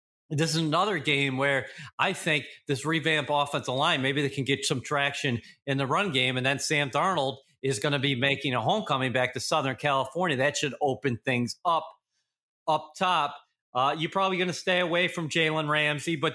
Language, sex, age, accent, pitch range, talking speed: English, male, 30-49, American, 130-160 Hz, 200 wpm